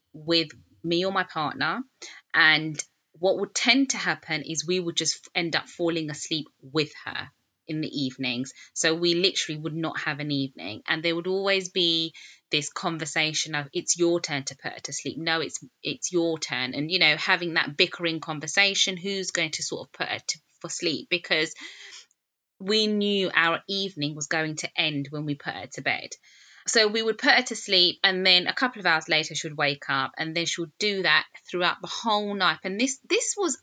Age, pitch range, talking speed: 20-39, 160-210 Hz, 205 wpm